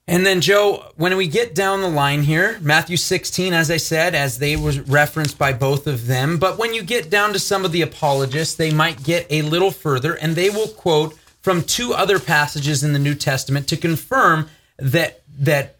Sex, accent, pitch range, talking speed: male, American, 135-170 Hz, 210 wpm